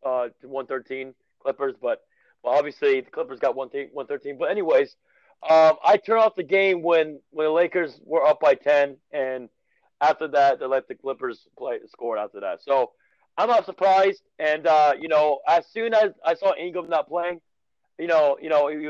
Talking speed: 190 wpm